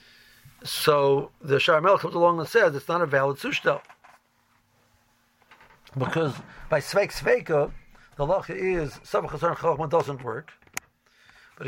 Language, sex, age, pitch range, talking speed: English, male, 60-79, 135-175 Hz, 115 wpm